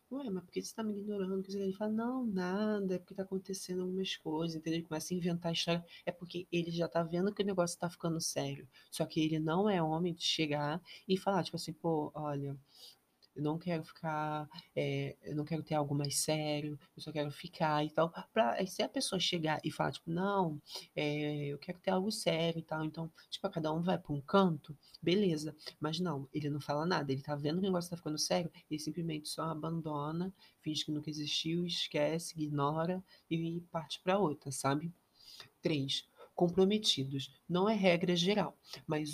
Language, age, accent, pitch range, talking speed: Portuguese, 20-39, Brazilian, 150-185 Hz, 200 wpm